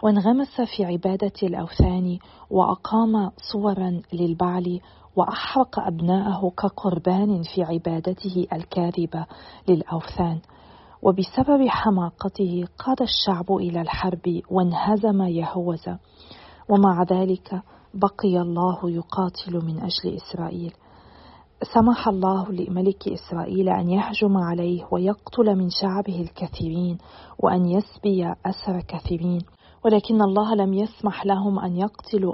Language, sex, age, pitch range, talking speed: Arabic, female, 40-59, 175-200 Hz, 95 wpm